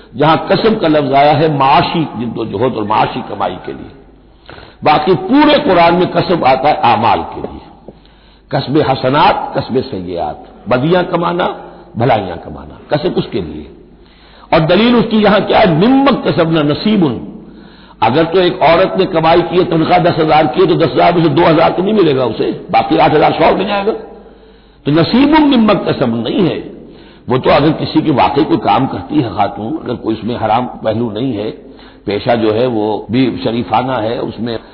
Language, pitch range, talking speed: Hindi, 125-175 Hz, 175 wpm